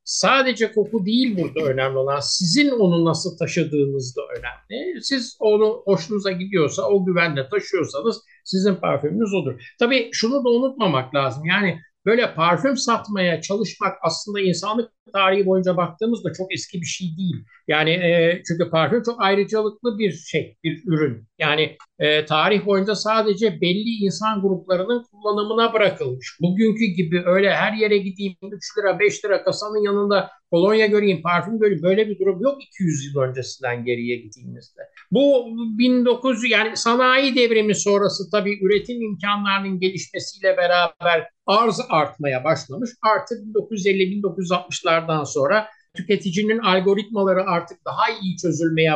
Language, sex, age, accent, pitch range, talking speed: Turkish, male, 60-79, native, 170-220 Hz, 135 wpm